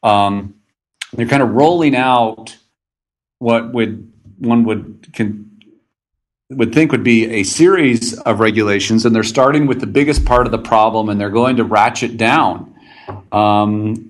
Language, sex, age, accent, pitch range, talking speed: English, male, 40-59, American, 110-130 Hz, 155 wpm